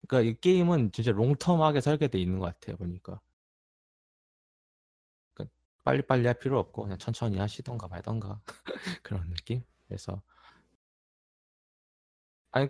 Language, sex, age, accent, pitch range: Korean, male, 20-39, native, 90-115 Hz